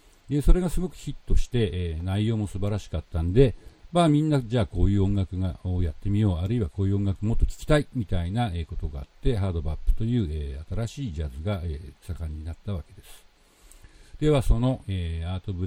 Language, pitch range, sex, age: Japanese, 80-115 Hz, male, 50-69